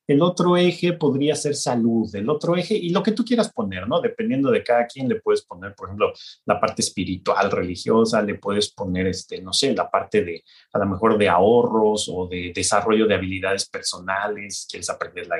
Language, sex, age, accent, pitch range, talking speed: Spanish, male, 30-49, Mexican, 120-180 Hz, 205 wpm